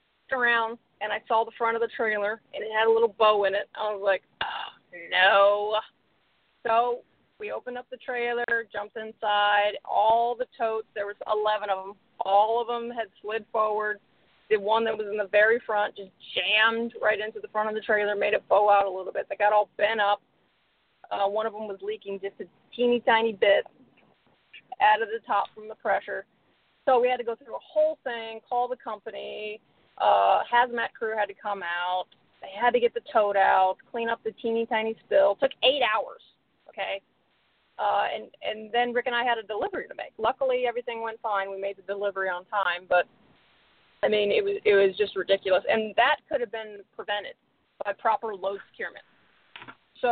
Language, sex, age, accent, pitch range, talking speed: English, female, 30-49, American, 205-240 Hz, 205 wpm